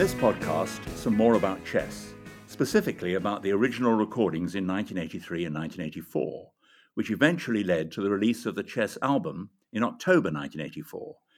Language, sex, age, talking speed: English, male, 60-79, 150 wpm